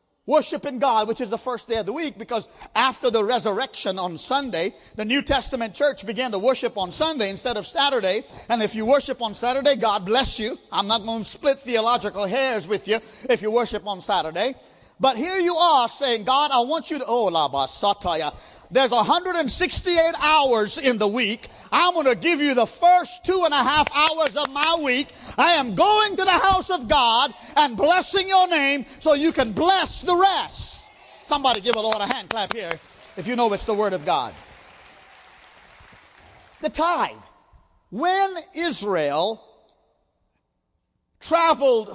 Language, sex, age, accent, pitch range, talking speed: English, male, 40-59, American, 220-315 Hz, 175 wpm